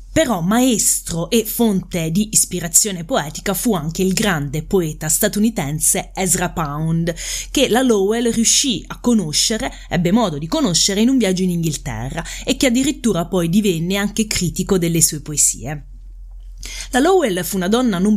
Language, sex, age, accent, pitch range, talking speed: Italian, female, 30-49, native, 165-220 Hz, 150 wpm